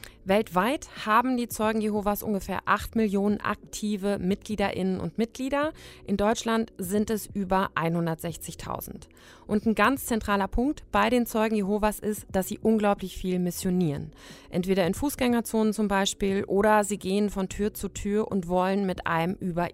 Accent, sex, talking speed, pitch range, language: German, female, 150 wpm, 180-220 Hz, German